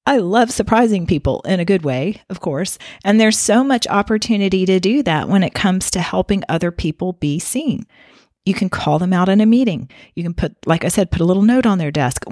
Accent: American